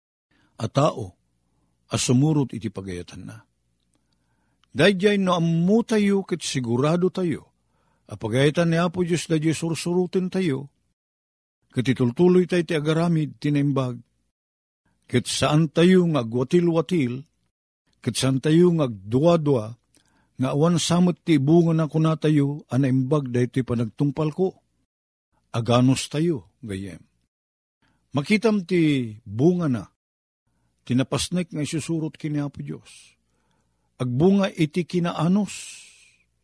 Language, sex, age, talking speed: Filipino, male, 50-69, 105 wpm